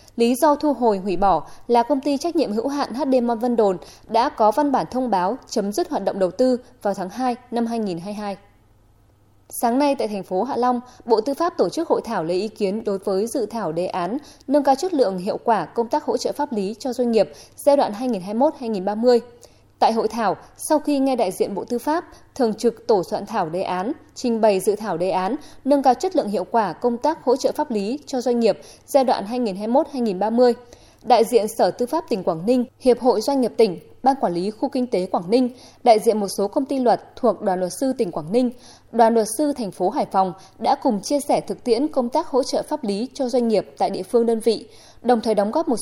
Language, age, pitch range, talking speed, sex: Vietnamese, 20-39, 205-265 Hz, 240 wpm, female